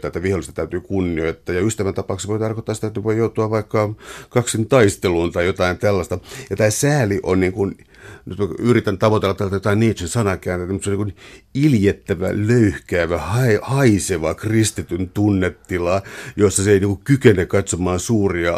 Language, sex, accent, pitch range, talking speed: Finnish, male, native, 90-110 Hz, 155 wpm